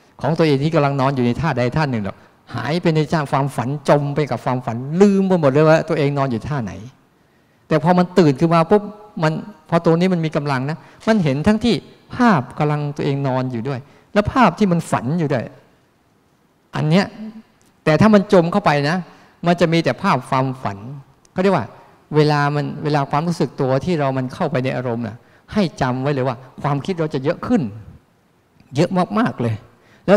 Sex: male